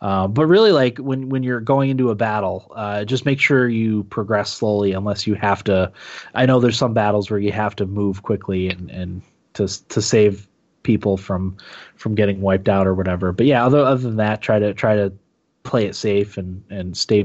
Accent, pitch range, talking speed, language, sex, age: American, 100-130 Hz, 215 wpm, English, male, 20-39